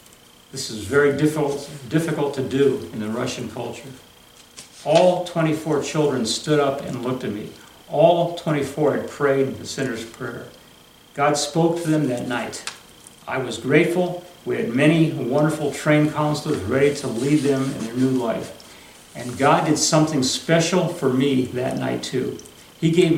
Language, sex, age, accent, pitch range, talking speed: English, male, 60-79, American, 125-155 Hz, 160 wpm